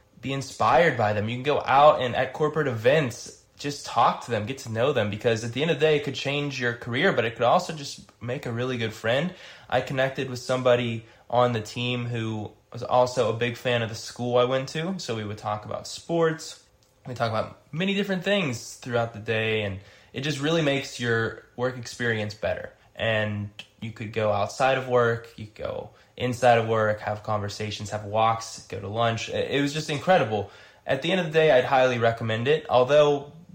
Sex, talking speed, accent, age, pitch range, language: male, 210 wpm, American, 20-39, 105-135 Hz, English